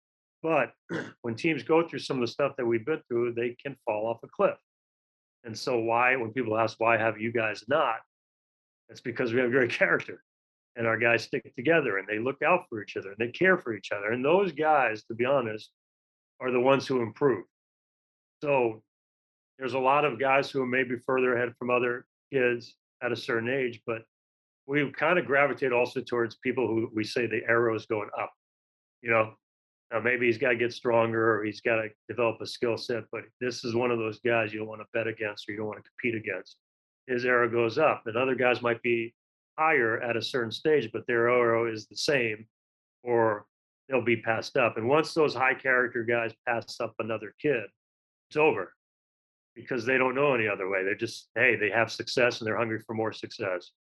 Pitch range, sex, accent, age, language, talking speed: 110-125 Hz, male, American, 40-59, English, 215 wpm